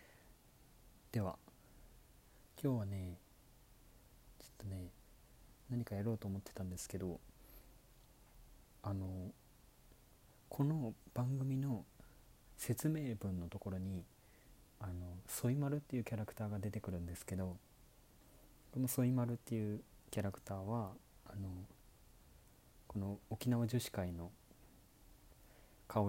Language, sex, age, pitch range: Japanese, male, 40-59, 95-120 Hz